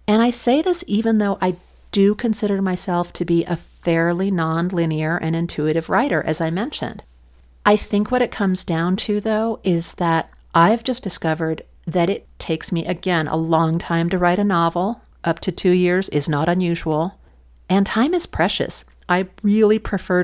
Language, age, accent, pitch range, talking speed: English, 50-69, American, 160-195 Hz, 180 wpm